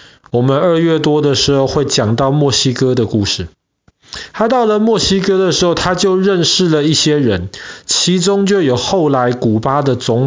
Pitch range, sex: 125-170 Hz, male